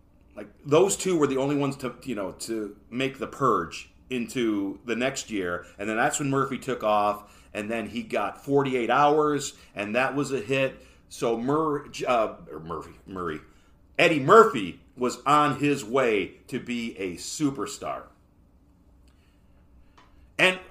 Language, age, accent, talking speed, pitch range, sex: English, 40-59, American, 155 wpm, 110-155 Hz, male